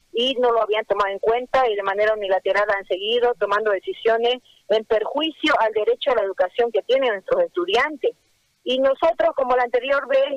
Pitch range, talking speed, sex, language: 220-285 Hz, 185 wpm, female, Spanish